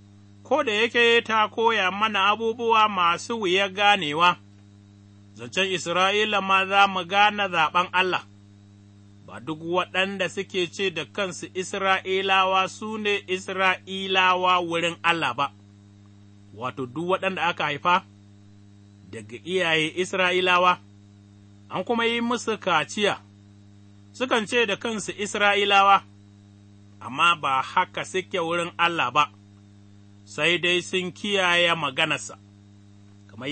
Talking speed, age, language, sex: 115 wpm, 30-49, English, male